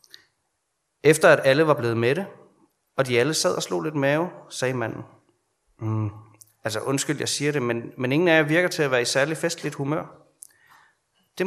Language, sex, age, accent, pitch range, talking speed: Danish, male, 30-49, native, 120-165 Hz, 195 wpm